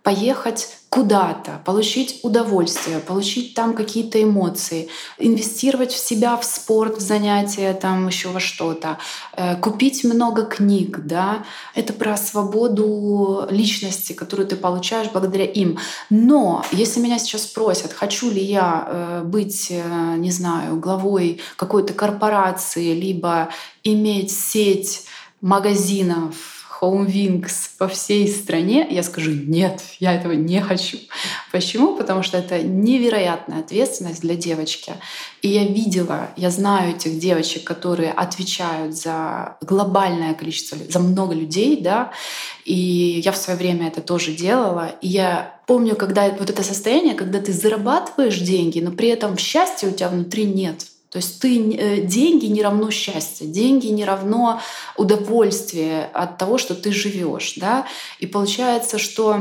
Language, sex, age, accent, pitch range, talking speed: Russian, female, 20-39, native, 175-215 Hz, 135 wpm